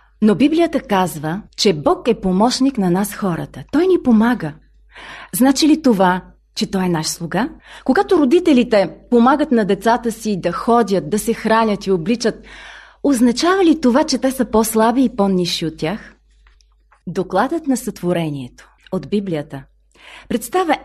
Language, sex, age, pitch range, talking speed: Bulgarian, female, 30-49, 185-275 Hz, 145 wpm